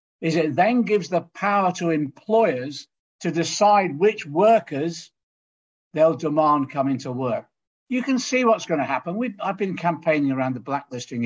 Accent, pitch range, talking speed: British, 140-200 Hz, 165 wpm